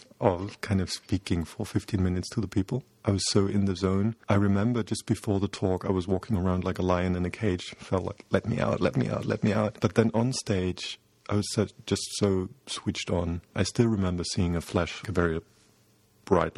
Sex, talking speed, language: male, 220 wpm, English